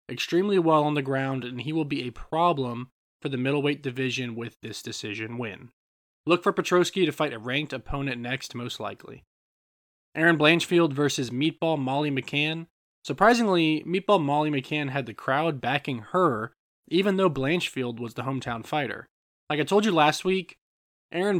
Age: 20-39